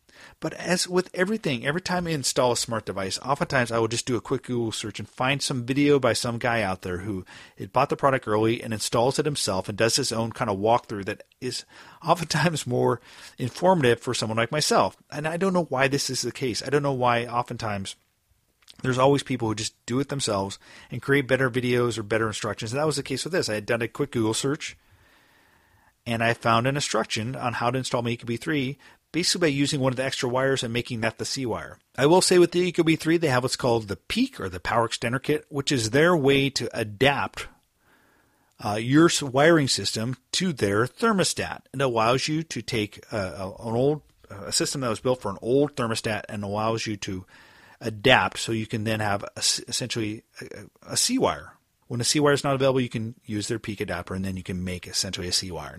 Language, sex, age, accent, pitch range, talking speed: English, male, 40-59, American, 110-140 Hz, 225 wpm